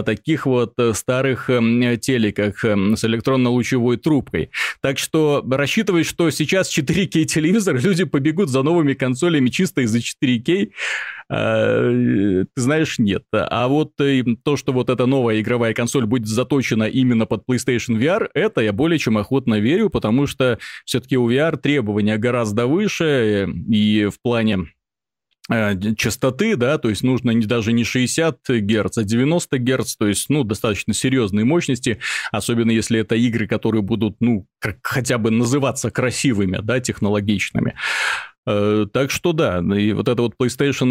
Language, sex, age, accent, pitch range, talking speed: Russian, male, 30-49, native, 115-140 Hz, 140 wpm